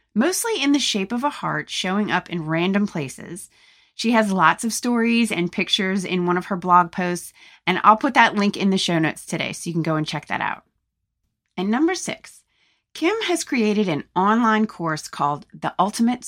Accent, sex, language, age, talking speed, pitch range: American, female, English, 30-49, 205 wpm, 175-230 Hz